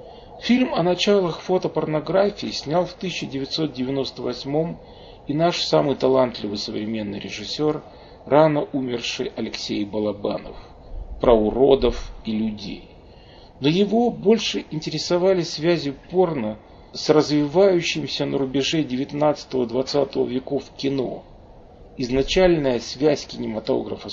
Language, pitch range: Russian, 130-180 Hz